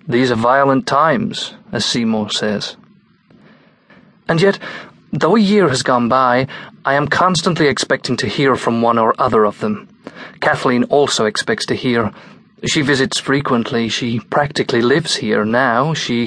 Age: 30-49